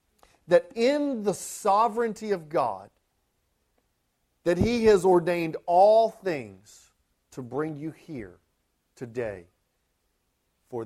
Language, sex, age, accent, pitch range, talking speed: English, male, 40-59, American, 135-200 Hz, 100 wpm